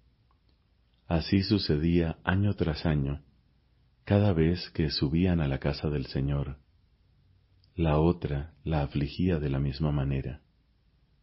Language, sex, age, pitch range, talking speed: Spanish, male, 40-59, 75-95 Hz, 120 wpm